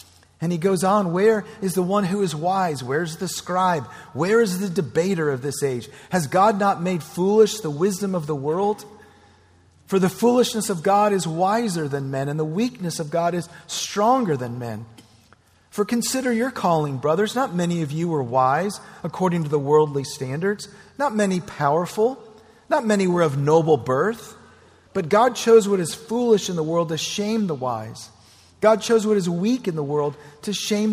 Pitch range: 140-200 Hz